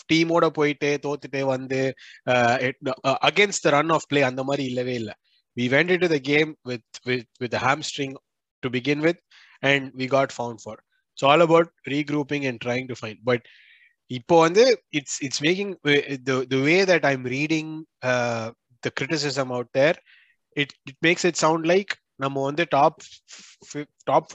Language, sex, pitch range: Tamil, male, 125-155 Hz